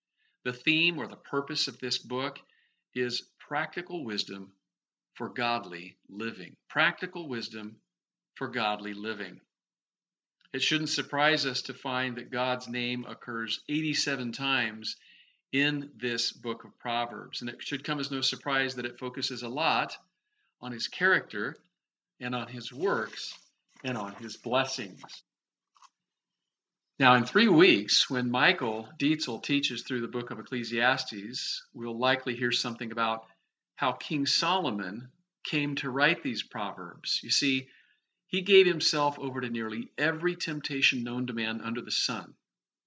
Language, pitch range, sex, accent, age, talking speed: English, 120-140 Hz, male, American, 50-69, 140 wpm